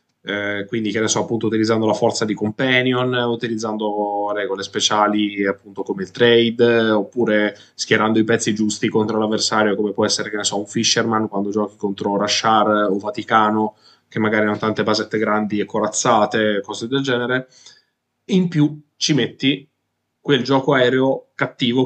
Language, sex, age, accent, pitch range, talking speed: English, male, 20-39, Italian, 105-120 Hz, 160 wpm